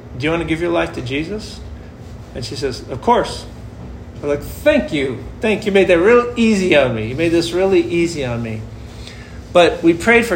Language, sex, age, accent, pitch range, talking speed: English, male, 40-59, American, 125-175 Hz, 220 wpm